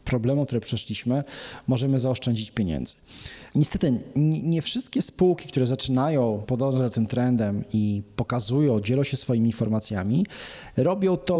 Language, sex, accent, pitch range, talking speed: Polish, male, native, 115-140 Hz, 120 wpm